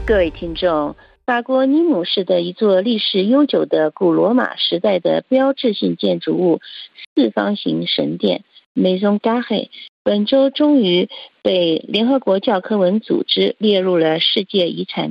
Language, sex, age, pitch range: Chinese, female, 50-69, 180-255 Hz